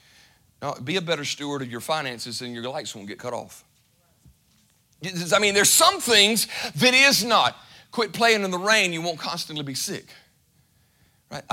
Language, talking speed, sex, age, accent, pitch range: English, 175 wpm, male, 40-59, American, 150-230 Hz